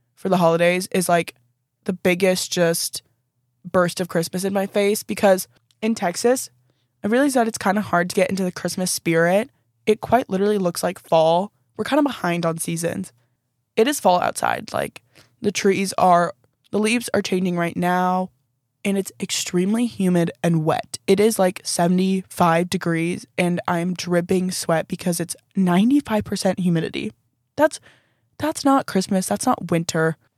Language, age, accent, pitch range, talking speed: English, 20-39, American, 170-195 Hz, 160 wpm